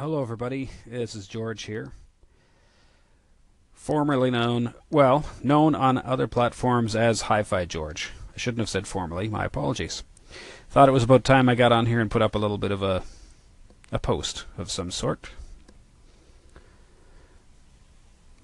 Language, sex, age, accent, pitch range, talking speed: English, male, 40-59, American, 85-120 Hz, 150 wpm